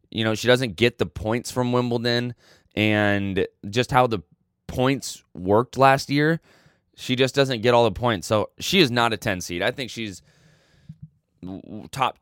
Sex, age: male, 20-39